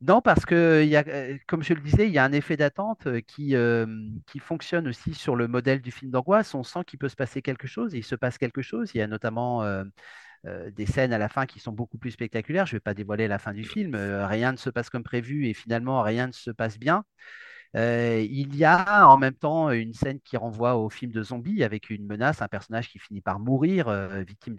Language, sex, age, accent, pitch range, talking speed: French, male, 40-59, French, 110-140 Hz, 255 wpm